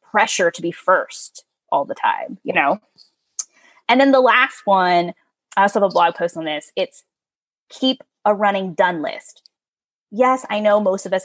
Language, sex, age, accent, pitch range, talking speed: English, female, 20-39, American, 195-285 Hz, 180 wpm